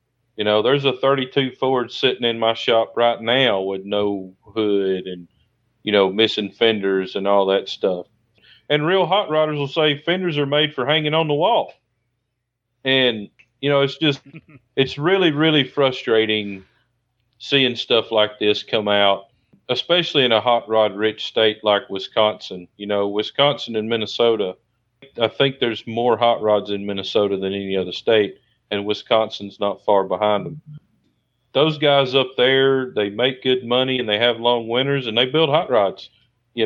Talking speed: 170 wpm